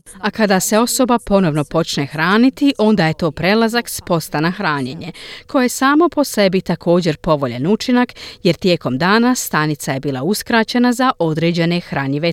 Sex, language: female, Croatian